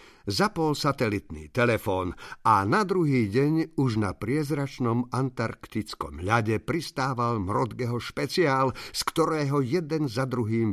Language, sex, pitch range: Slovak, male, 110-150 Hz